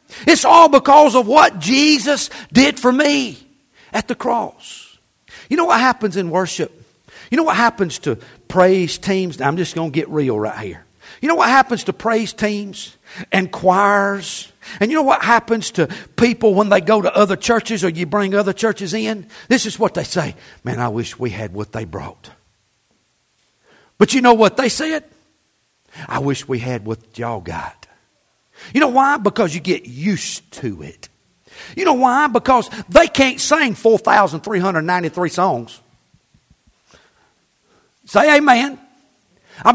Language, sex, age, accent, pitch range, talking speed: English, male, 50-69, American, 185-295 Hz, 165 wpm